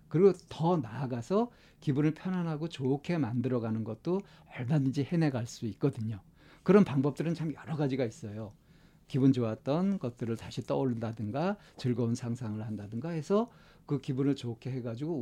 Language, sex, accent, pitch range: Korean, male, native, 120-170 Hz